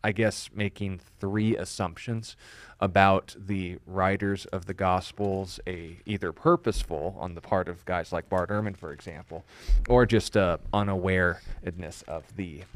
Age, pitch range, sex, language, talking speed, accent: 30-49, 90-105 Hz, male, English, 140 wpm, American